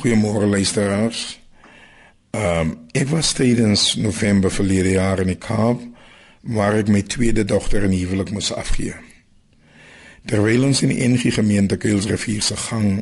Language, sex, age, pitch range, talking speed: Dutch, male, 50-69, 95-115 Hz, 125 wpm